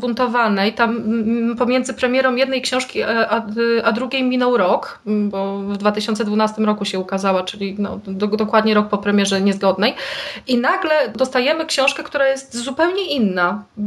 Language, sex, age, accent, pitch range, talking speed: Polish, female, 20-39, native, 210-260 Hz, 140 wpm